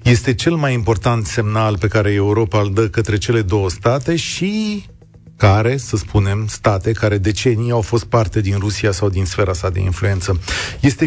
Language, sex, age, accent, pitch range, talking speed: Romanian, male, 40-59, native, 105-135 Hz, 180 wpm